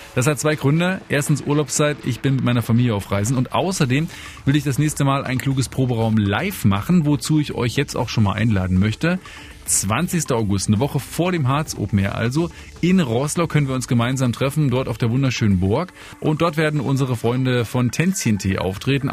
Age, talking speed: 20-39, 200 wpm